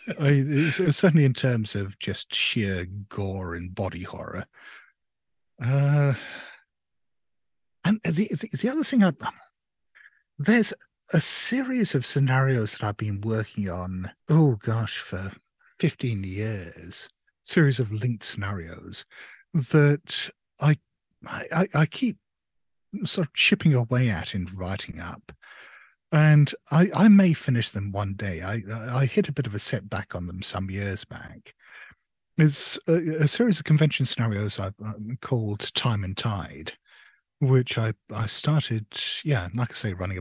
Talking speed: 140 wpm